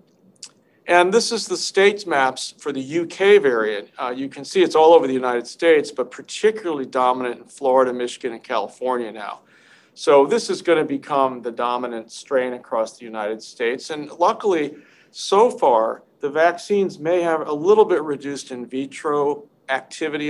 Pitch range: 130-180 Hz